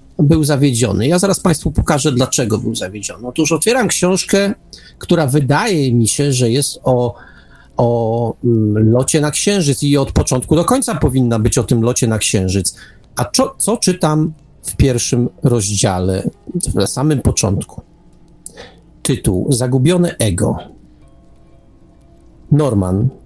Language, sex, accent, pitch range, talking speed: Polish, male, native, 110-150 Hz, 125 wpm